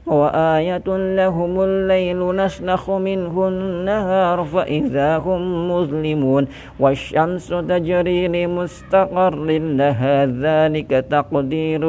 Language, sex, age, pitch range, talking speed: Indonesian, male, 50-69, 150-180 Hz, 75 wpm